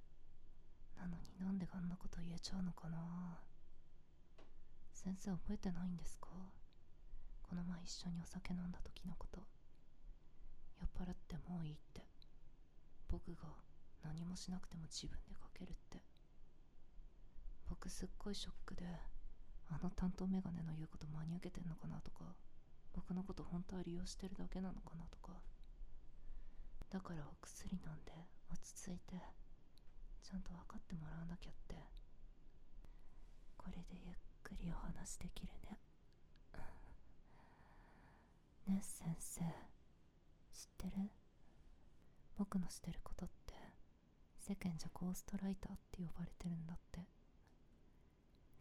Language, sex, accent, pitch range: Japanese, female, native, 165-185 Hz